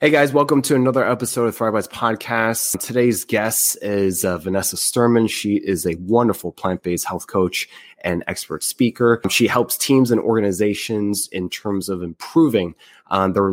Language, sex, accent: English, male, American